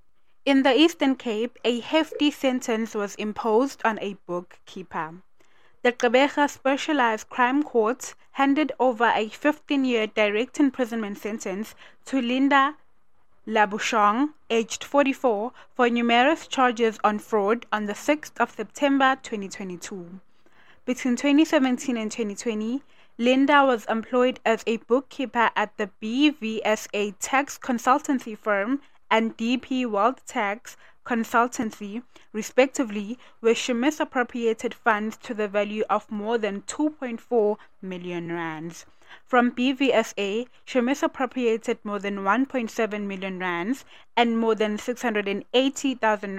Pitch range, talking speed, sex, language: 210-260 Hz, 115 wpm, female, English